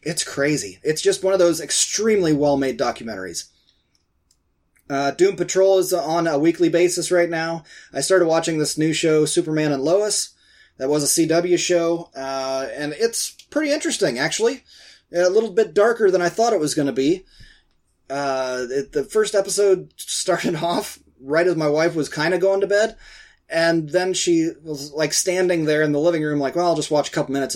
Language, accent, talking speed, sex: English, American, 185 wpm, male